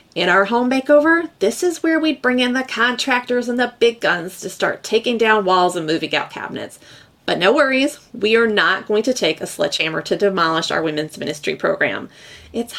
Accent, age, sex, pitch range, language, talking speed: American, 30-49, female, 180-250 Hz, English, 200 wpm